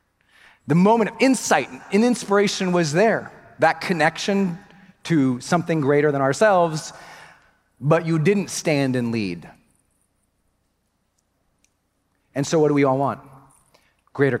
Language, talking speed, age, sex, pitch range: English, 120 wpm, 40-59, male, 125-170 Hz